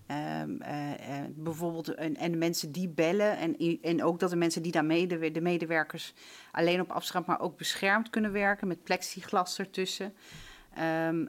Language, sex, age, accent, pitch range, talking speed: Dutch, female, 40-59, Dutch, 155-180 Hz, 170 wpm